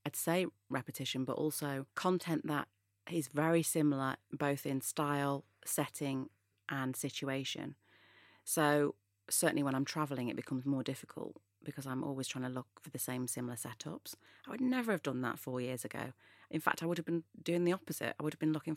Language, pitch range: English, 125-155 Hz